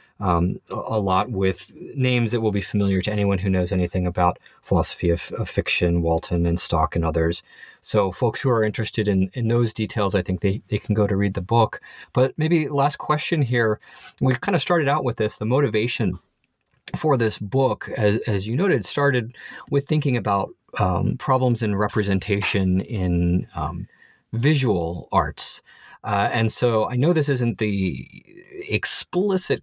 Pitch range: 95-130 Hz